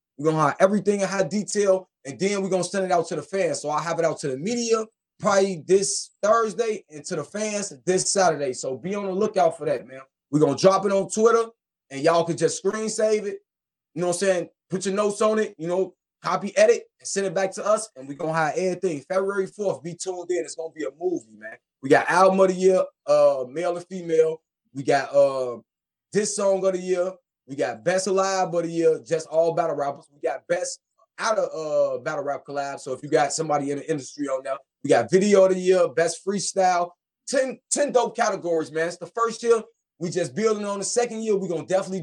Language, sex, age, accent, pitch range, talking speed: English, male, 20-39, American, 160-205 Hz, 245 wpm